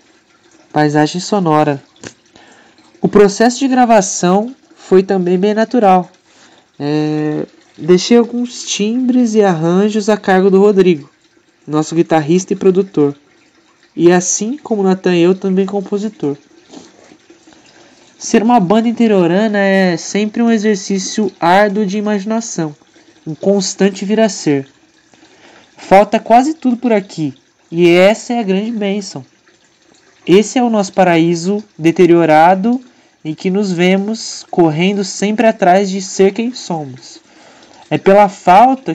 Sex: male